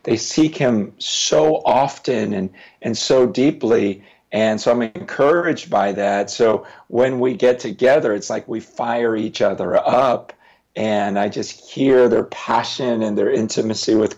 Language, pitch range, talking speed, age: English, 100-125 Hz, 155 wpm, 50-69